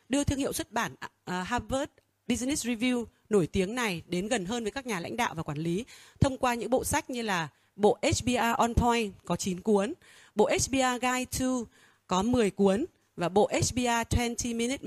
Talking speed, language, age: 200 wpm, Vietnamese, 20-39